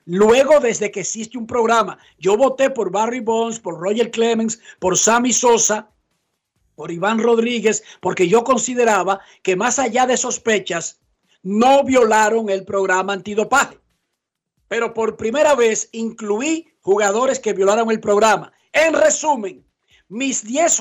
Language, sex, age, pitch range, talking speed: Spanish, male, 60-79, 215-275 Hz, 135 wpm